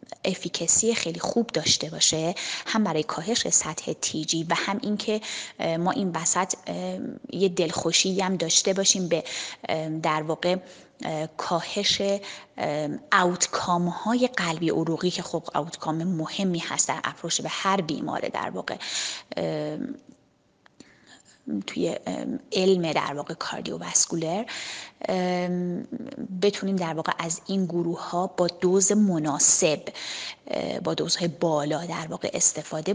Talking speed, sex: 110 wpm, female